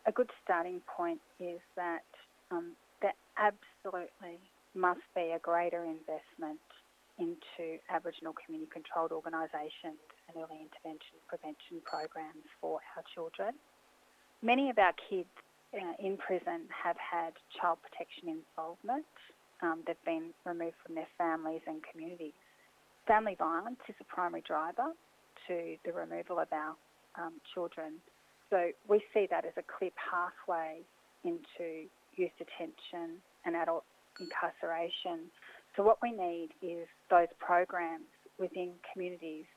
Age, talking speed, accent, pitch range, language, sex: 30-49, 125 wpm, Australian, 165-190 Hz, English, female